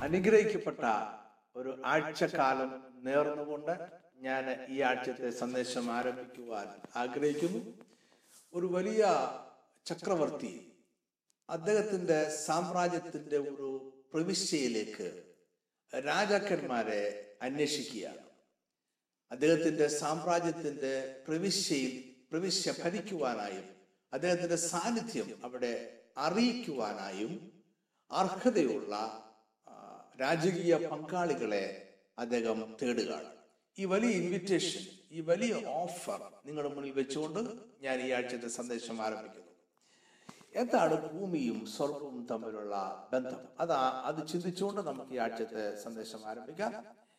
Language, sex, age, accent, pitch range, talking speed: Malayalam, male, 60-79, native, 130-185 Hz, 70 wpm